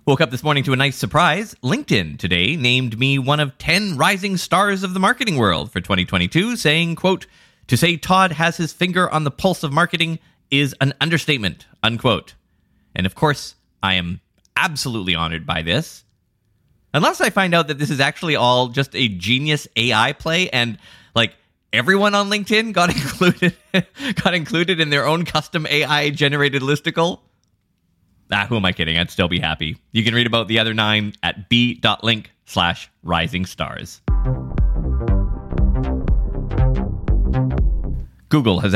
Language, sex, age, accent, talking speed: English, male, 30-49, American, 155 wpm